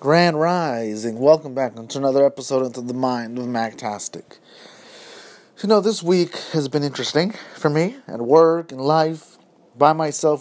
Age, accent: 30-49, American